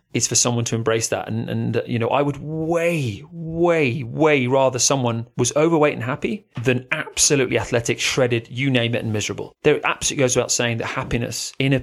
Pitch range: 115-145 Hz